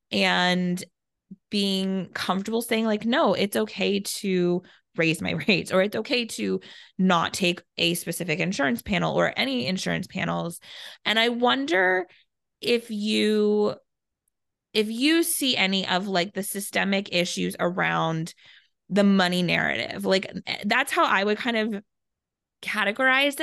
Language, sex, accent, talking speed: English, female, American, 135 wpm